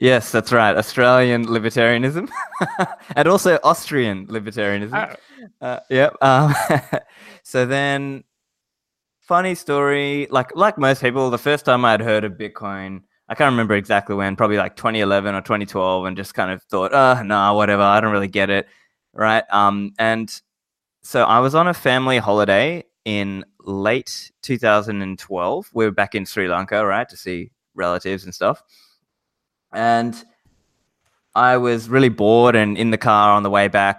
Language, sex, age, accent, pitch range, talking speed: English, male, 20-39, Australian, 105-130 Hz, 155 wpm